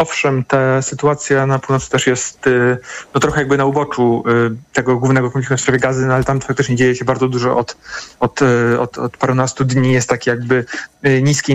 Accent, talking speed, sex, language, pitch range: native, 205 wpm, male, Polish, 125-135 Hz